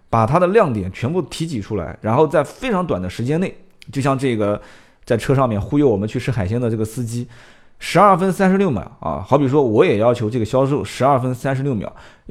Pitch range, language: 110-155 Hz, Chinese